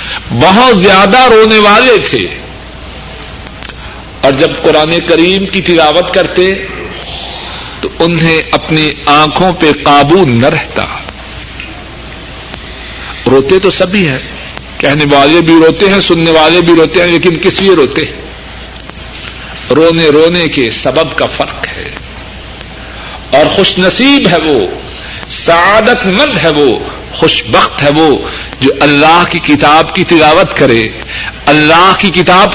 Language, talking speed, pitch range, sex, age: Urdu, 125 wpm, 150-195 Hz, male, 60-79